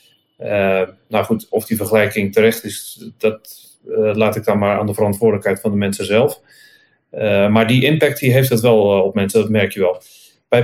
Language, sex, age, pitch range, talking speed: Dutch, male, 30-49, 110-135 Hz, 205 wpm